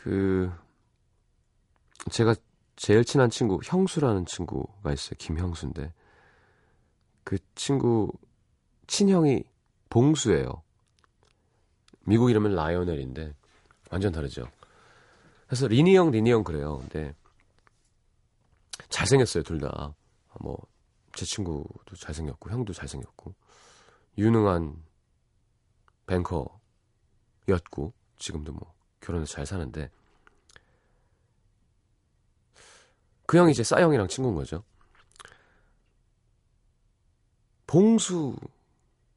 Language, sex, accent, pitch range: Korean, male, native, 85-120 Hz